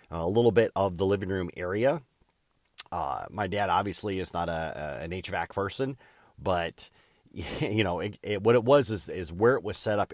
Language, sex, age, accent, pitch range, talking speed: English, male, 30-49, American, 85-105 Hz, 200 wpm